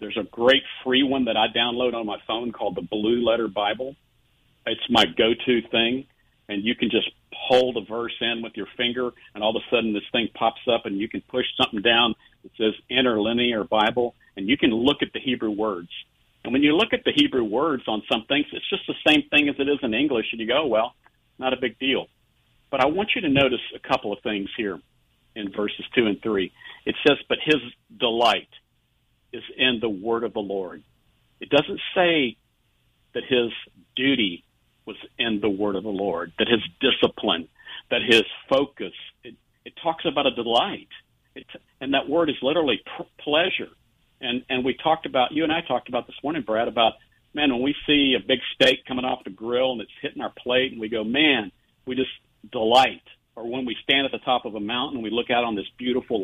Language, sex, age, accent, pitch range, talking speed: English, male, 50-69, American, 110-130 Hz, 215 wpm